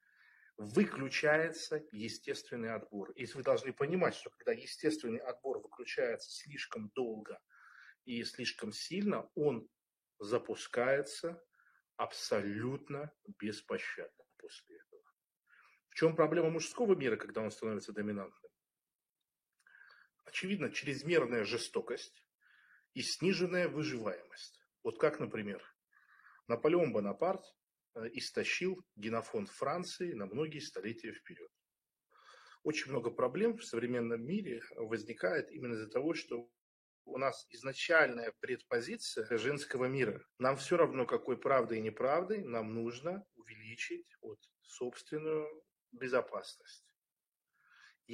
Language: Russian